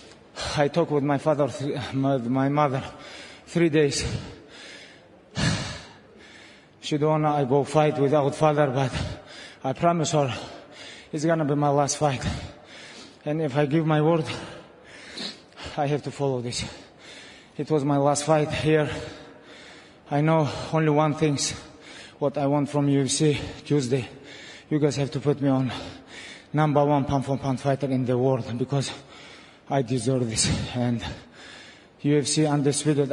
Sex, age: male, 20-39